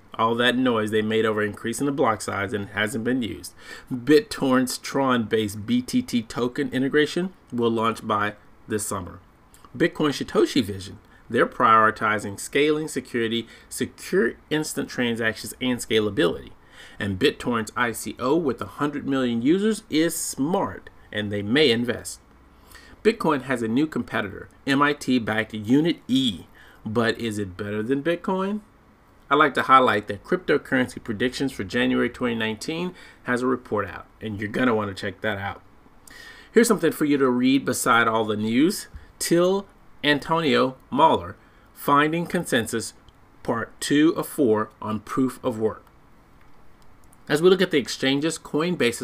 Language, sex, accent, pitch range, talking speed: English, male, American, 110-145 Hz, 140 wpm